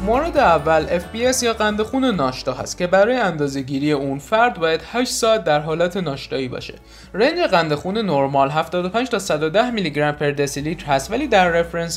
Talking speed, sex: 175 wpm, male